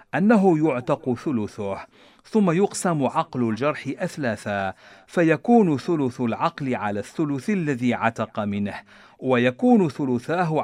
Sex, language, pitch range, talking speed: male, Arabic, 110-170 Hz, 100 wpm